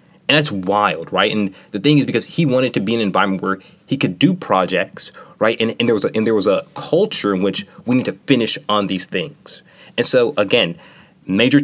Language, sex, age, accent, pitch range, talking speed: English, male, 20-39, American, 95-140 Hz, 230 wpm